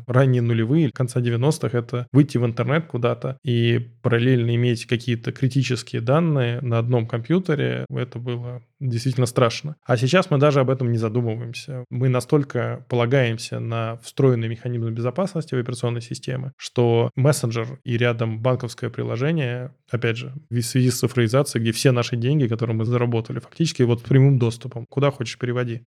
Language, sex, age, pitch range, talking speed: Russian, male, 20-39, 120-135 Hz, 155 wpm